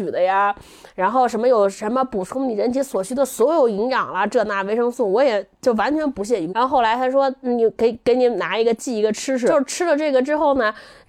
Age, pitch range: 20-39, 230-345 Hz